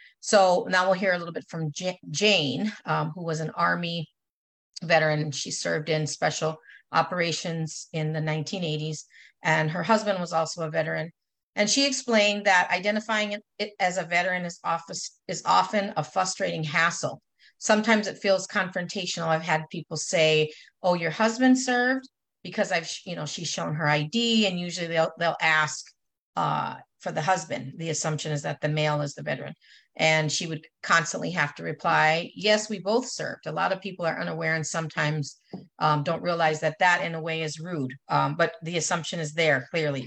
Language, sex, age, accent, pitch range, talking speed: English, female, 40-59, American, 155-195 Hz, 180 wpm